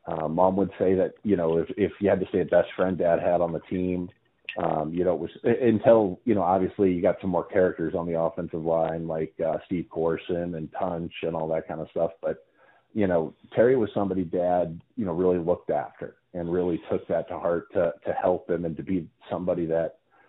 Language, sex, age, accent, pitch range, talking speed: English, male, 40-59, American, 85-100 Hz, 230 wpm